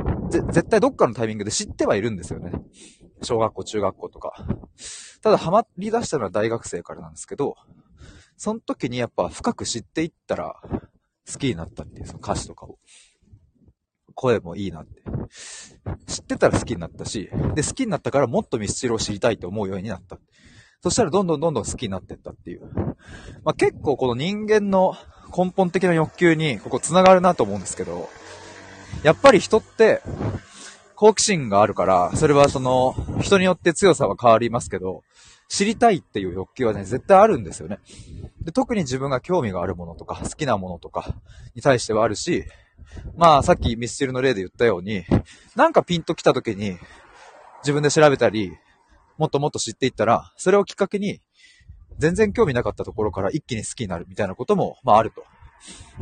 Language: Japanese